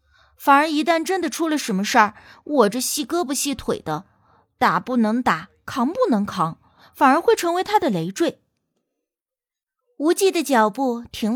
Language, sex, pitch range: Chinese, female, 225-330 Hz